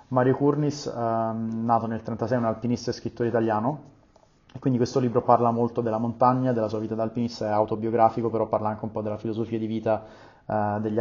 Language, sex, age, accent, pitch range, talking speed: Italian, male, 30-49, native, 110-120 Hz, 200 wpm